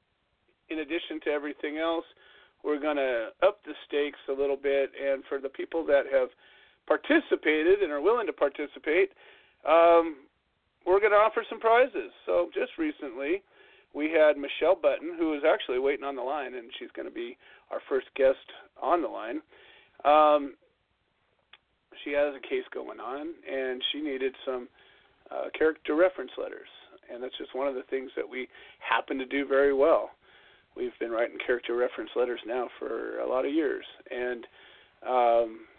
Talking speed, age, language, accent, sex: 170 wpm, 40-59, English, American, male